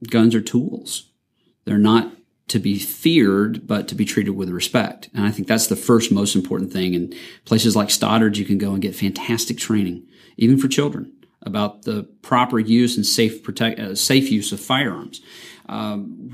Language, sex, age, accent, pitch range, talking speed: English, male, 40-59, American, 100-120 Hz, 185 wpm